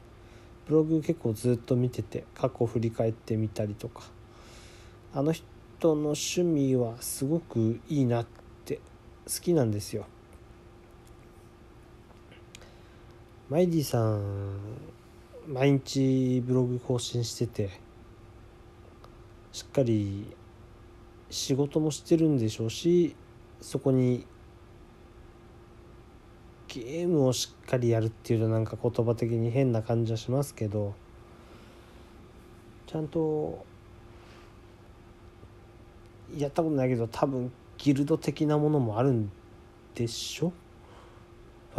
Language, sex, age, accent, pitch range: Japanese, male, 40-59, native, 110-125 Hz